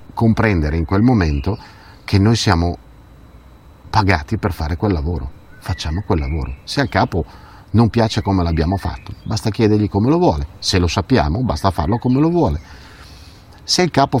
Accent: native